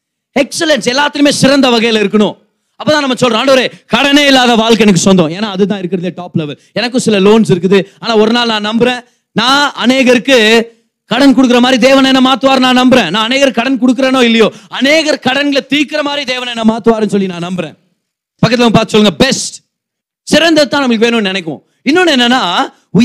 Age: 30-49